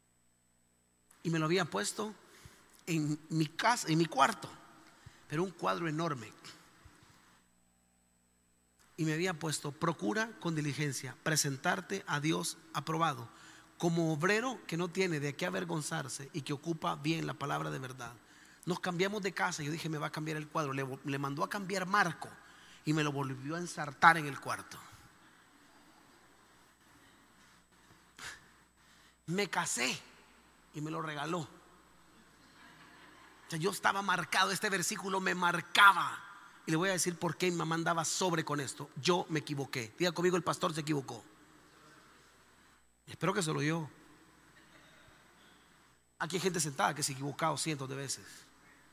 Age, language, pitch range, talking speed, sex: 40-59, Spanish, 140-180 Hz, 150 wpm, male